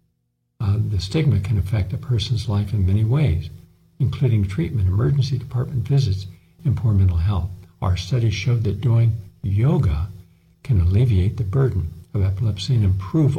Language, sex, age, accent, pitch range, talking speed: English, male, 60-79, American, 95-130 Hz, 150 wpm